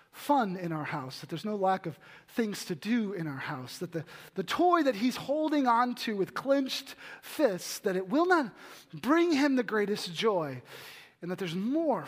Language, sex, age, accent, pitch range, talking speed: English, male, 30-49, American, 180-235 Hz, 200 wpm